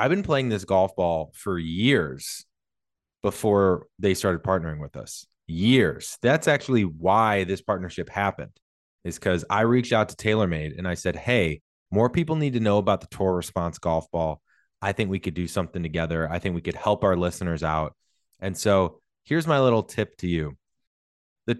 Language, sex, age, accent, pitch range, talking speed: English, male, 20-39, American, 90-120 Hz, 185 wpm